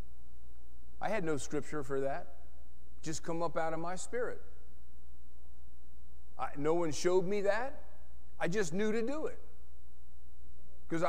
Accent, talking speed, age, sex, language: American, 135 wpm, 40-59, male, English